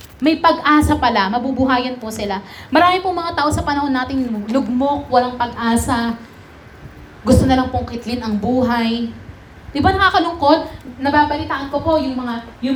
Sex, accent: female, Filipino